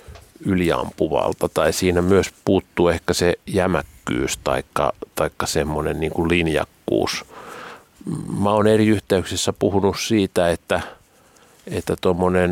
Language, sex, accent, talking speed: Finnish, male, native, 105 wpm